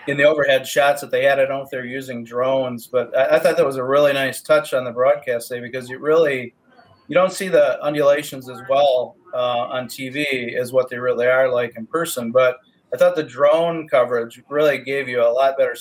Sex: male